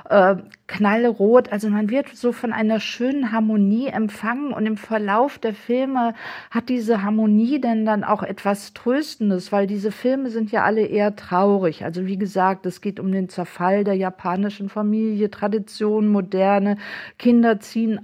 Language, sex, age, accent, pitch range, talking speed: German, female, 50-69, German, 205-235 Hz, 155 wpm